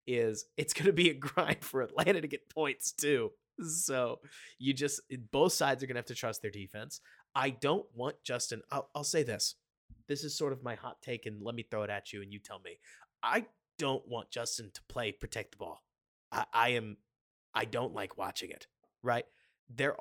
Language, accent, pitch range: English, American, 115-160 Hz